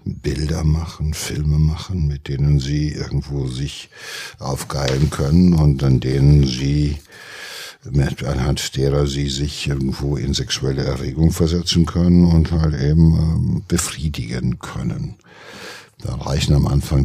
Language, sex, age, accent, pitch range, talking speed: German, male, 60-79, German, 65-80 Hz, 125 wpm